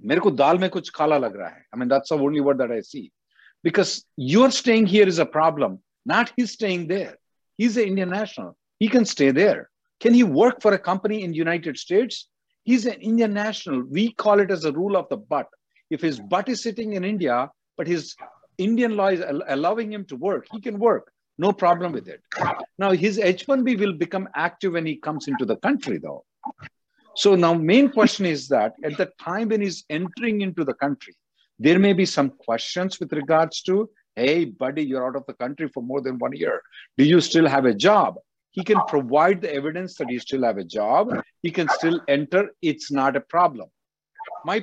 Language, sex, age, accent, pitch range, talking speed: English, male, 50-69, Indian, 155-215 Hz, 200 wpm